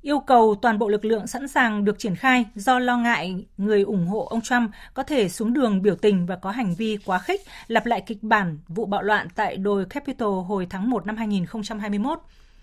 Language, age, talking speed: Vietnamese, 20-39, 220 wpm